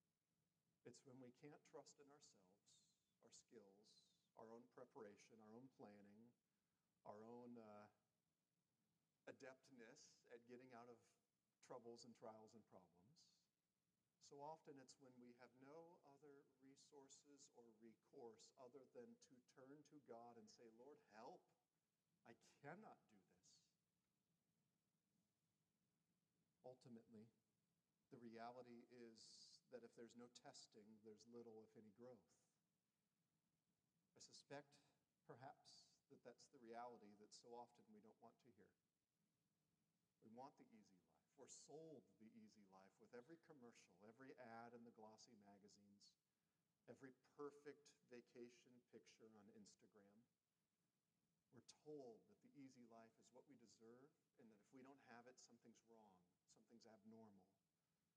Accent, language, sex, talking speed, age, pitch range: American, English, male, 130 wpm, 50-69, 115-145 Hz